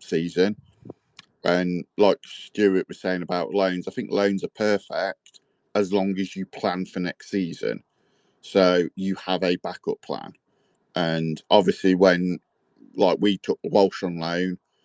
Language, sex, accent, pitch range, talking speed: English, male, British, 90-95 Hz, 145 wpm